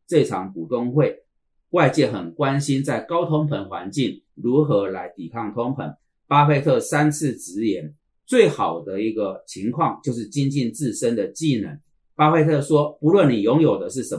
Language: Chinese